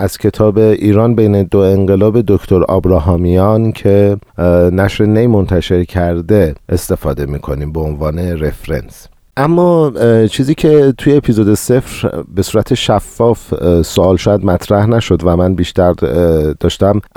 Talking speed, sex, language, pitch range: 120 wpm, male, Persian, 90-115 Hz